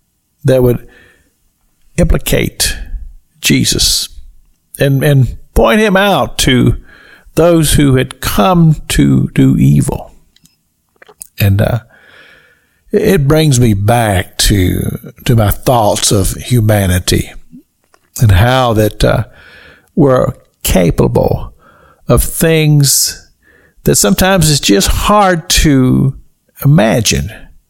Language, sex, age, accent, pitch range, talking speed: English, male, 60-79, American, 90-145 Hz, 95 wpm